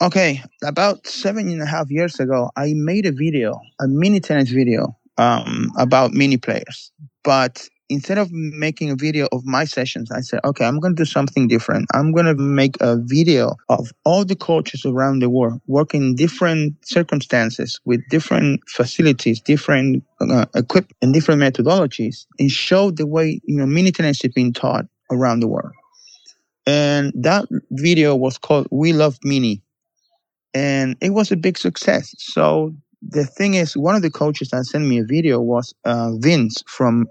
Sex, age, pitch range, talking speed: male, 30-49, 130-165 Hz, 175 wpm